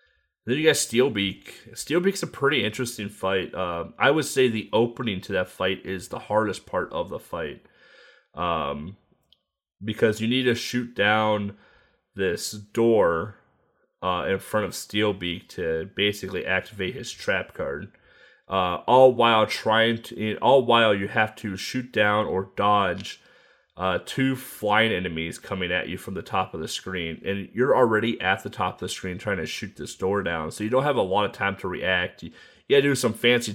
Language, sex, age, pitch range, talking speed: English, male, 30-49, 95-115 Hz, 185 wpm